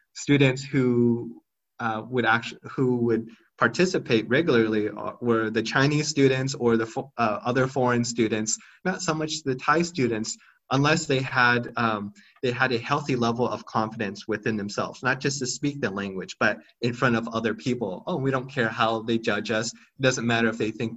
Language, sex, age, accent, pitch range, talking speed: English, male, 30-49, American, 110-130 Hz, 185 wpm